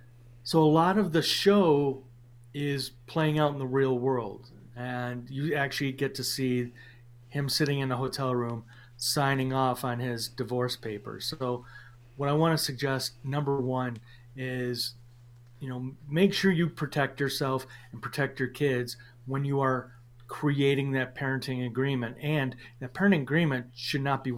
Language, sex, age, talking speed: English, male, 40-59, 160 wpm